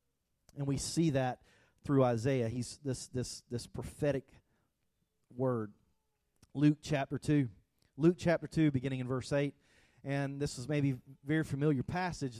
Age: 40-59